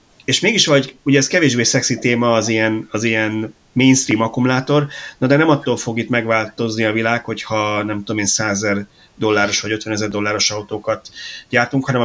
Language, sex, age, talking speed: Hungarian, male, 30-49, 175 wpm